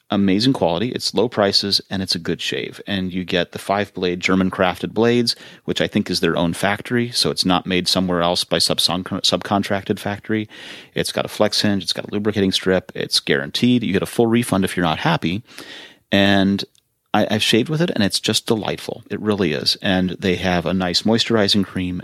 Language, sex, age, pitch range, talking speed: English, male, 30-49, 90-115 Hz, 210 wpm